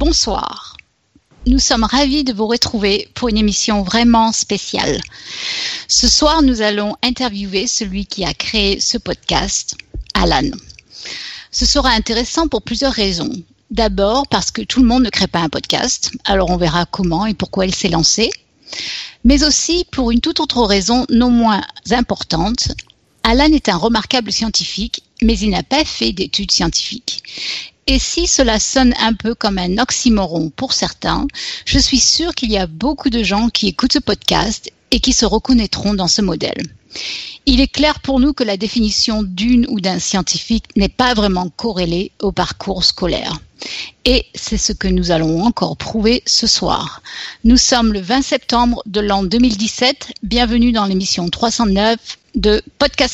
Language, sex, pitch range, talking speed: French, female, 200-255 Hz, 165 wpm